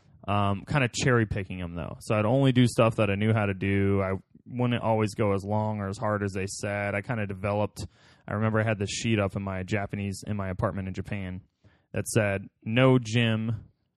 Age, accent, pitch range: 20-39, American, 95-115 Hz